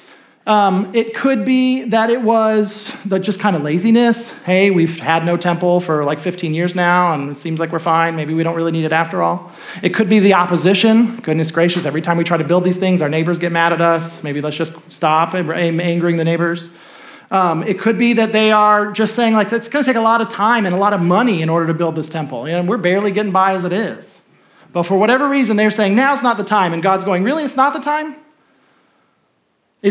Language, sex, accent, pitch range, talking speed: English, male, American, 165-230 Hz, 240 wpm